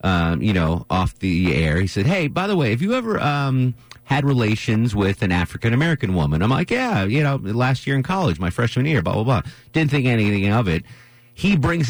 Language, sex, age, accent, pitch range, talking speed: English, male, 40-59, American, 95-125 Hz, 220 wpm